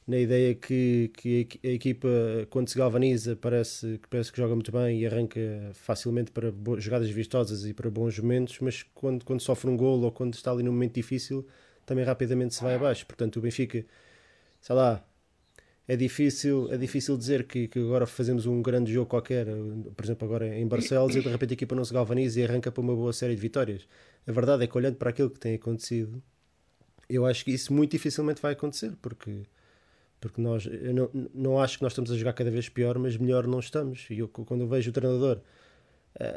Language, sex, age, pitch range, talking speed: Portuguese, male, 20-39, 115-130 Hz, 210 wpm